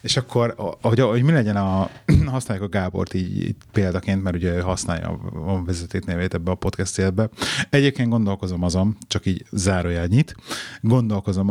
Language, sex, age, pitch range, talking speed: Hungarian, male, 30-49, 95-120 Hz, 150 wpm